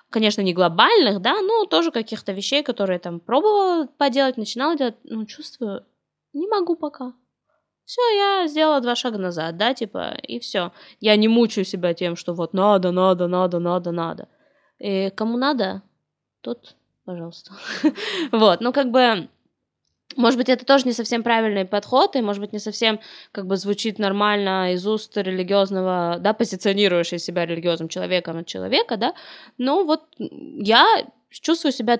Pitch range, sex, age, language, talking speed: 190-260 Hz, female, 20-39, Russian, 160 wpm